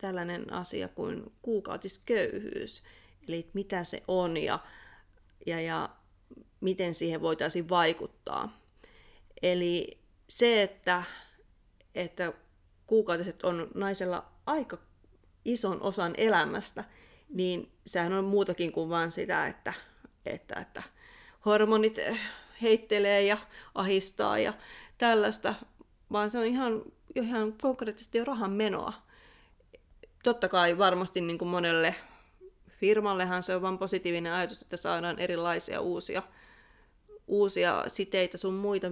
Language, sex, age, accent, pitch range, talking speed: Finnish, female, 30-49, native, 175-215 Hz, 110 wpm